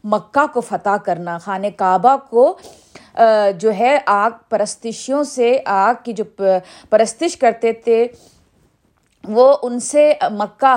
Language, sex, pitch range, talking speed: Urdu, female, 210-285 Hz, 125 wpm